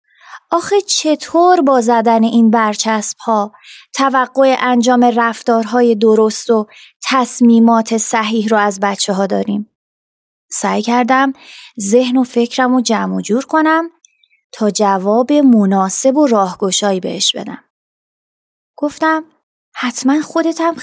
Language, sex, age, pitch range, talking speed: Persian, female, 20-39, 215-290 Hz, 110 wpm